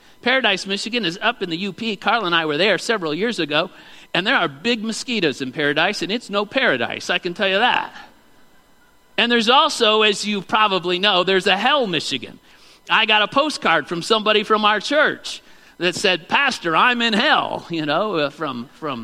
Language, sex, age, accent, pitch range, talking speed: English, male, 50-69, American, 160-205 Hz, 190 wpm